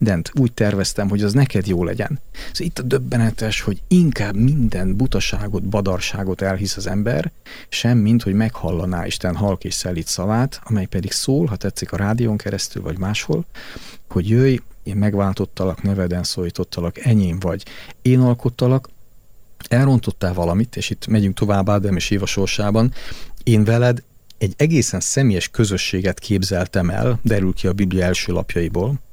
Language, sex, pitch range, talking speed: Hungarian, male, 95-120 Hz, 150 wpm